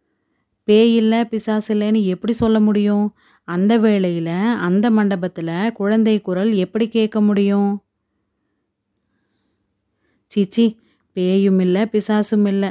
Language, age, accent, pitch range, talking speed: Tamil, 30-49, native, 185-220 Hz, 90 wpm